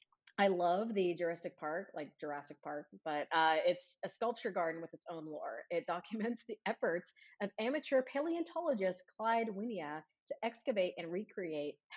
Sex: female